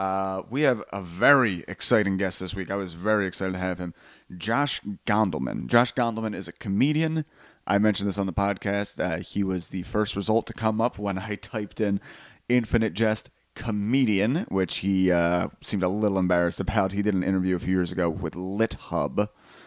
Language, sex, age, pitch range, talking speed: English, male, 30-49, 100-120 Hz, 195 wpm